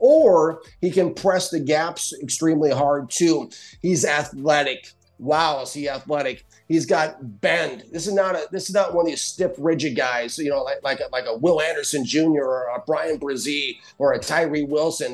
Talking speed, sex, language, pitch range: 195 wpm, male, English, 145-175 Hz